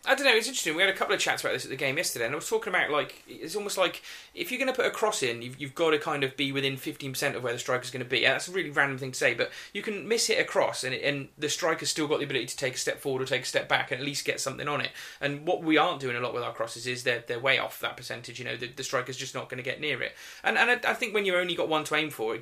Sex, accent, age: male, British, 30-49